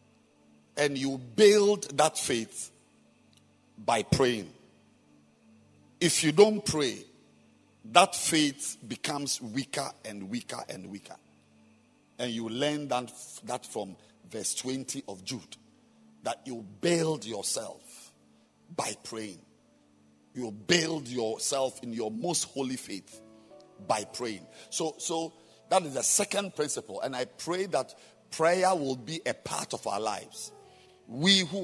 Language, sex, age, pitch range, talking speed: English, male, 50-69, 120-170 Hz, 125 wpm